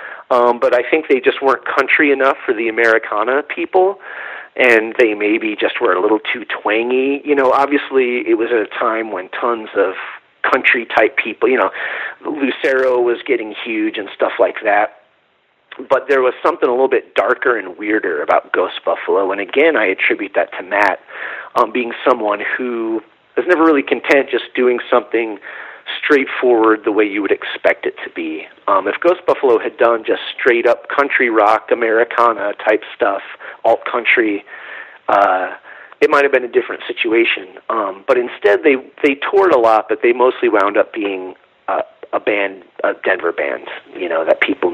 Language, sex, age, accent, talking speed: English, male, 40-59, American, 175 wpm